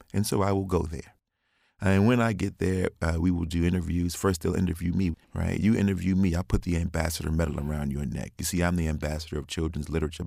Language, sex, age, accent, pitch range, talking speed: English, male, 40-59, American, 80-90 Hz, 235 wpm